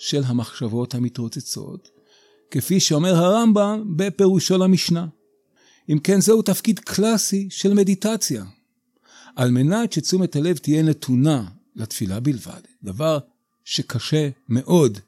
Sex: male